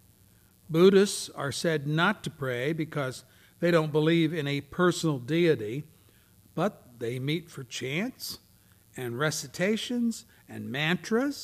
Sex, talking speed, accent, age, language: male, 120 wpm, American, 60-79, English